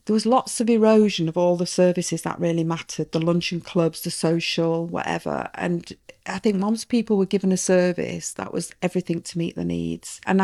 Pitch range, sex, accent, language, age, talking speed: 165-185 Hz, female, British, English, 40-59, 200 wpm